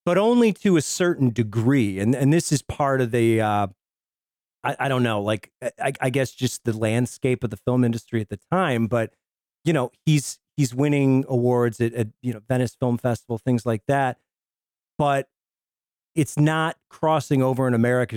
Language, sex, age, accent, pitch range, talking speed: English, male, 40-59, American, 115-145 Hz, 185 wpm